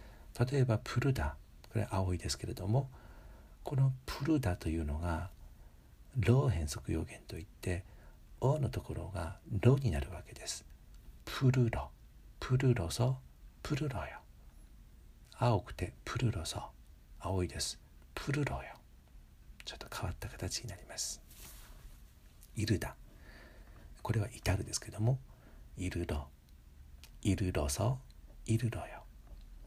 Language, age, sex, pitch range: Korean, 60-79, male, 75-120 Hz